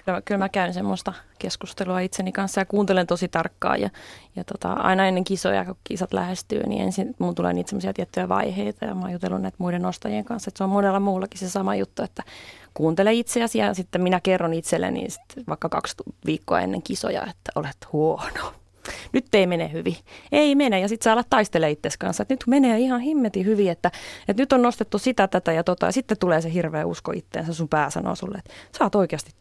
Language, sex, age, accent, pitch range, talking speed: Finnish, female, 20-39, native, 165-205 Hz, 210 wpm